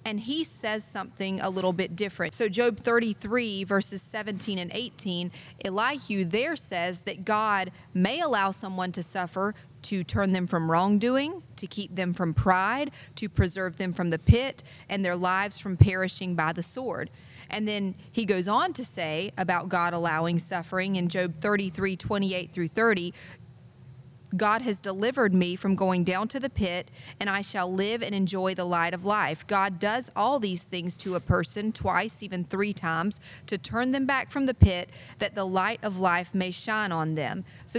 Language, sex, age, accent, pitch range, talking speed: English, female, 40-59, American, 180-215 Hz, 185 wpm